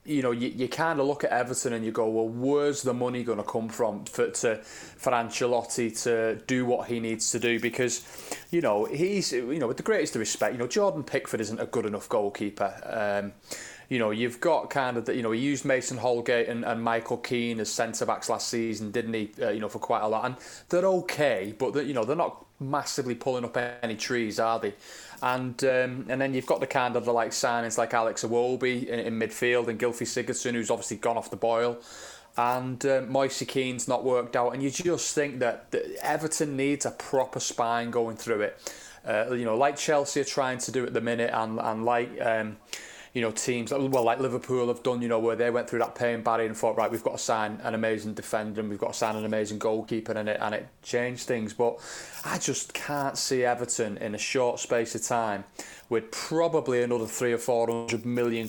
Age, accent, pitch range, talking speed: 20-39, British, 115-130 Hz, 230 wpm